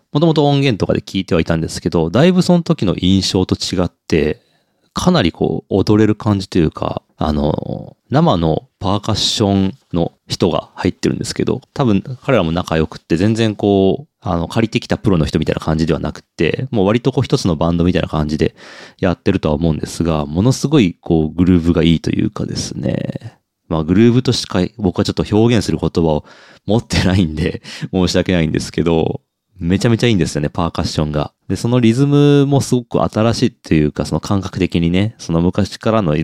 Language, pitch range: Japanese, 85-115 Hz